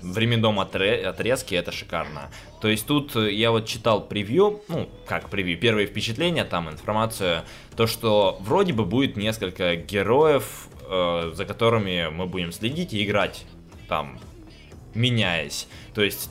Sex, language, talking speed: male, Russian, 135 wpm